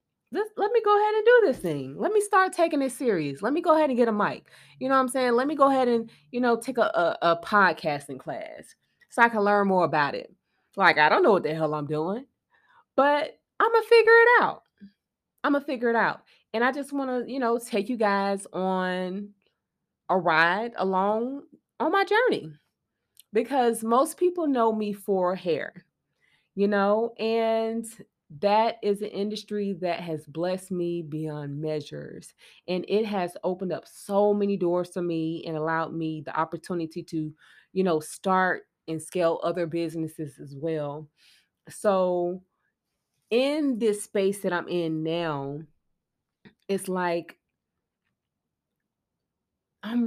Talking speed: 170 wpm